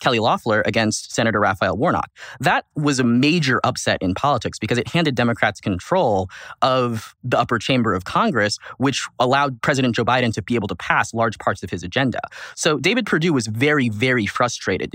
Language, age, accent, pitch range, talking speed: English, 20-39, American, 105-130 Hz, 185 wpm